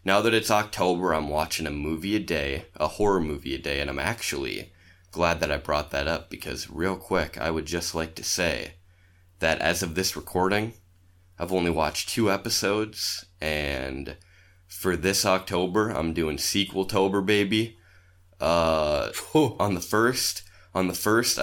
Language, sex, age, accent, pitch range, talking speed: English, male, 20-39, American, 80-100 Hz, 160 wpm